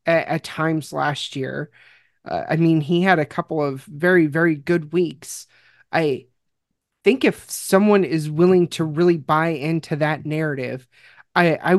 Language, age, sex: English, 30-49, male